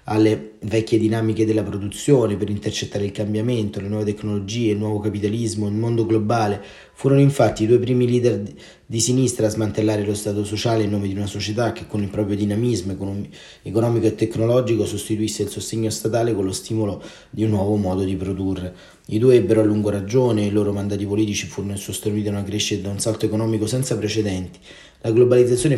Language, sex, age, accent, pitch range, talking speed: Italian, male, 30-49, native, 100-110 Hz, 190 wpm